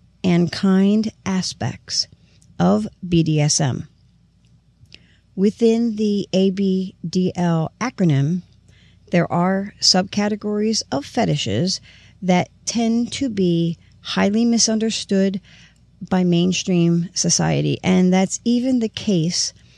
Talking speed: 85 wpm